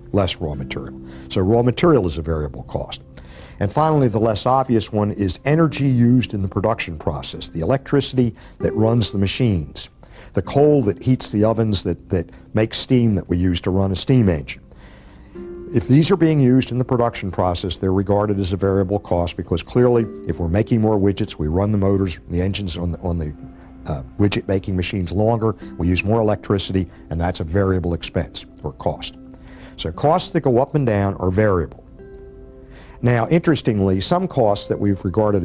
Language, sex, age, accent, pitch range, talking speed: English, male, 60-79, American, 90-120 Hz, 185 wpm